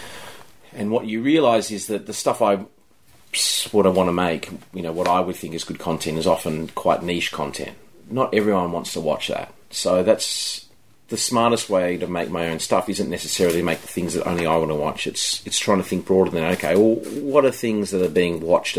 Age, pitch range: 30-49, 80-100 Hz